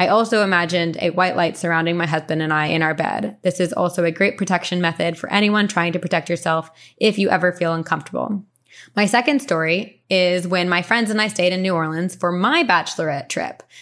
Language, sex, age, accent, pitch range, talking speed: English, female, 20-39, American, 165-205 Hz, 215 wpm